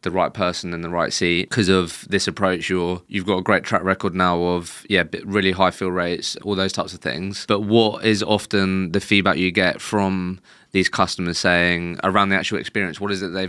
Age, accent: 20-39, British